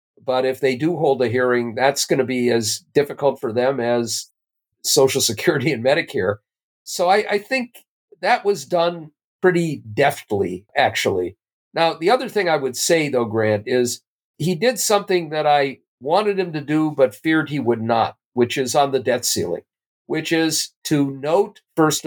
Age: 50-69